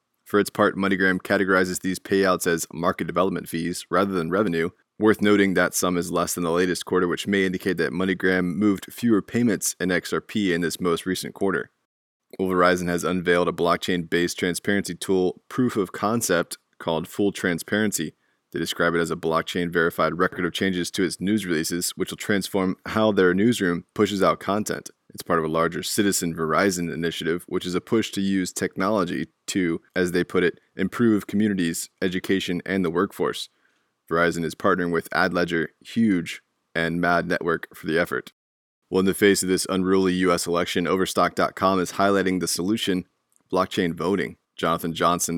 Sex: male